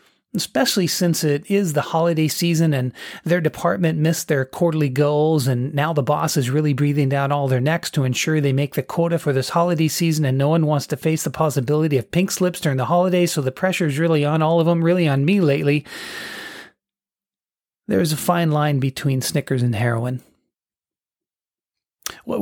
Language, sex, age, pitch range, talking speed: English, male, 30-49, 140-175 Hz, 190 wpm